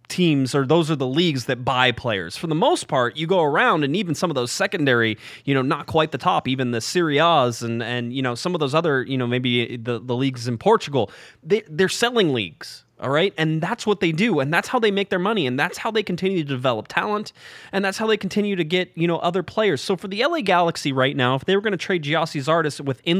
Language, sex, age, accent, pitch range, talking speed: English, male, 20-39, American, 140-195 Hz, 260 wpm